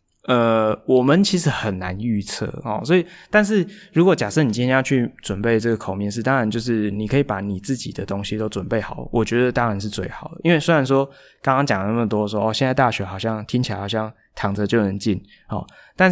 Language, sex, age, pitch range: Chinese, male, 20-39, 105-135 Hz